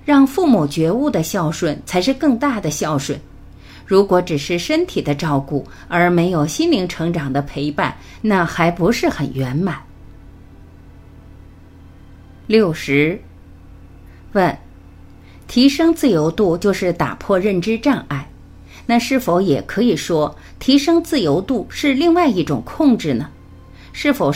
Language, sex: Chinese, female